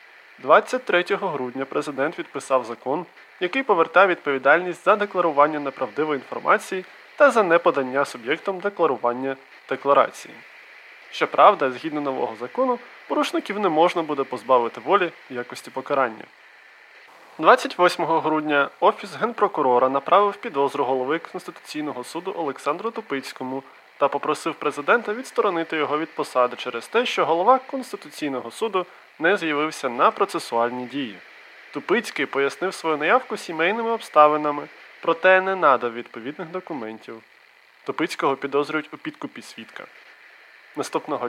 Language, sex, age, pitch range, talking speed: Ukrainian, male, 20-39, 135-185 Hz, 110 wpm